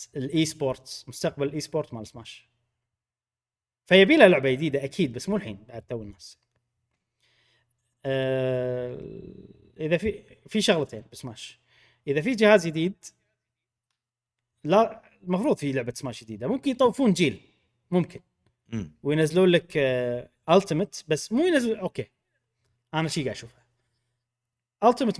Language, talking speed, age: Arabic, 120 wpm, 30-49